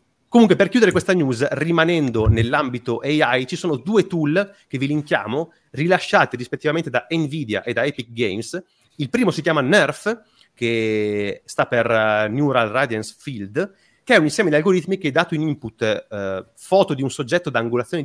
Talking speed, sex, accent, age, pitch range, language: 170 wpm, male, native, 30-49, 115-160 Hz, Italian